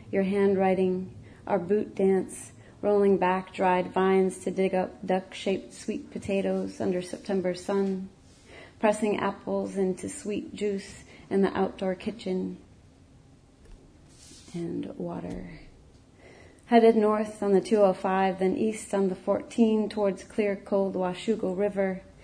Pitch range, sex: 185-205 Hz, female